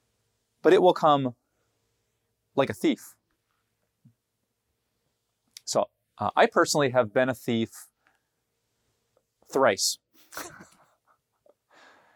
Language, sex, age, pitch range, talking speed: English, male, 30-49, 115-140 Hz, 85 wpm